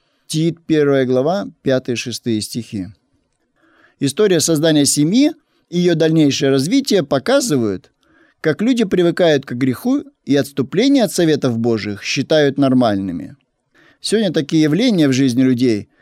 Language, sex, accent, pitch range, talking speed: Russian, male, native, 130-175 Hz, 115 wpm